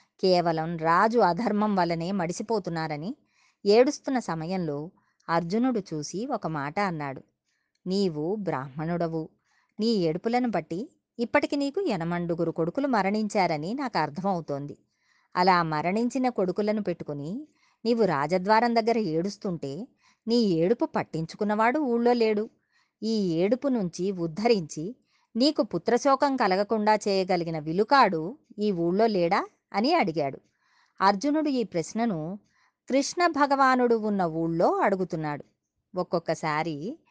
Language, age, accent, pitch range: Telugu, 20-39, native, 170-230 Hz